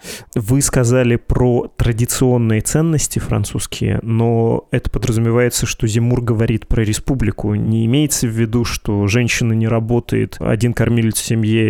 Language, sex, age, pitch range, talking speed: Russian, male, 20-39, 110-125 Hz, 130 wpm